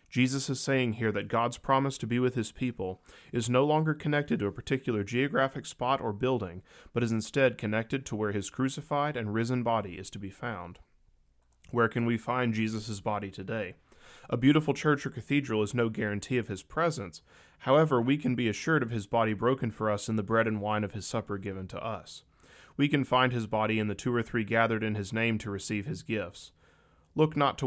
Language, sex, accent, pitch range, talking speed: English, male, American, 100-125 Hz, 215 wpm